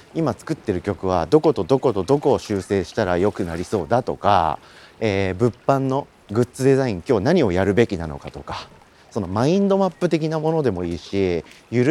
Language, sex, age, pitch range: Japanese, male, 40-59, 95-150 Hz